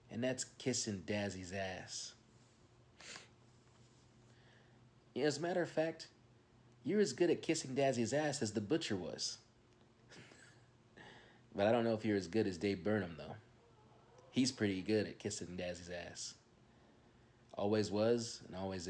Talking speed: 140 wpm